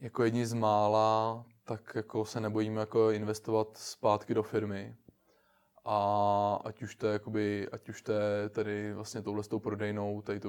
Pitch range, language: 100-110 Hz, Czech